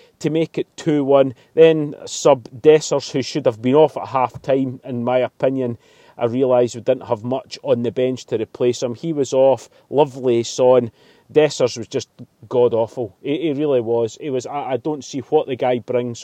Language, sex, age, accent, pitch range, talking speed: English, male, 30-49, British, 120-150 Hz, 190 wpm